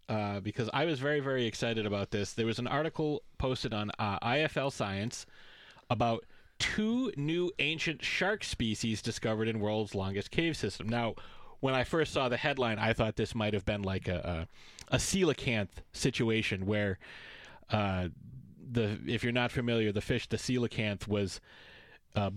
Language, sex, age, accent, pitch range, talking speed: English, male, 30-49, American, 105-135 Hz, 165 wpm